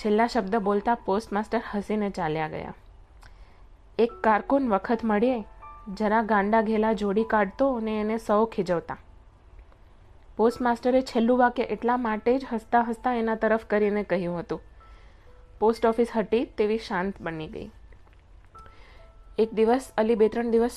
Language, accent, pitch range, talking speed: Gujarati, native, 190-235 Hz, 110 wpm